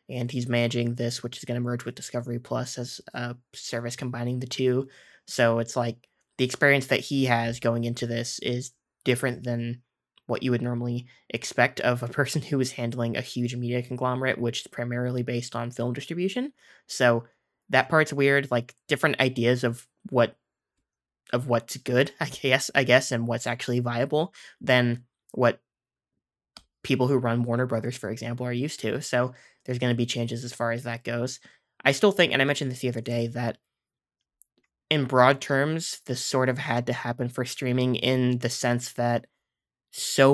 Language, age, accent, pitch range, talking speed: English, 20-39, American, 120-130 Hz, 185 wpm